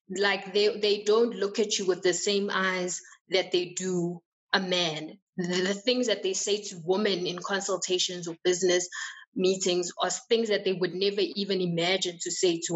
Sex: female